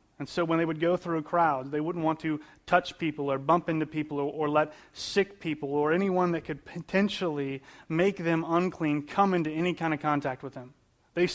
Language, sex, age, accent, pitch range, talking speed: English, male, 30-49, American, 145-170 Hz, 215 wpm